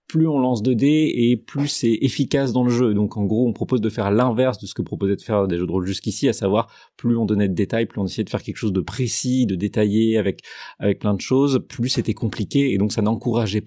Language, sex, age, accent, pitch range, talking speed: French, male, 30-49, French, 100-125 Hz, 270 wpm